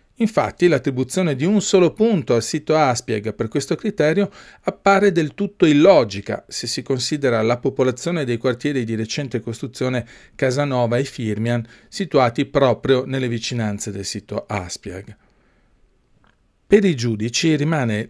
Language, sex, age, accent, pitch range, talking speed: Italian, male, 40-59, native, 125-180 Hz, 135 wpm